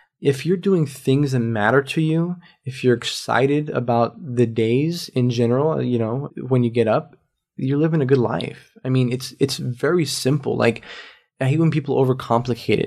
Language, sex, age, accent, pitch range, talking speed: English, male, 20-39, American, 115-140 Hz, 180 wpm